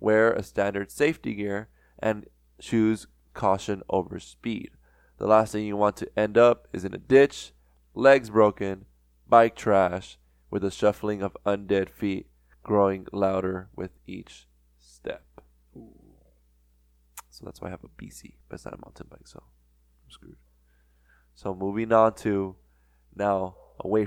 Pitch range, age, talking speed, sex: 75-110 Hz, 20-39, 145 wpm, male